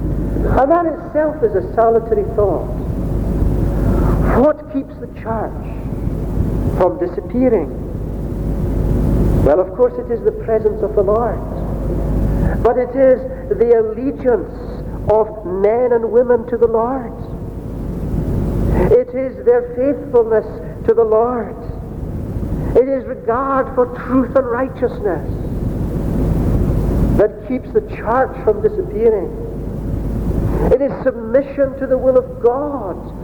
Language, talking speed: English, 115 wpm